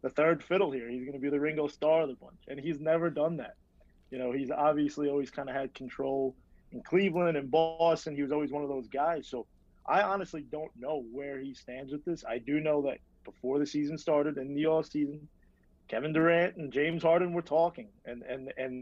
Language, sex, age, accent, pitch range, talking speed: English, male, 30-49, American, 130-165 Hz, 225 wpm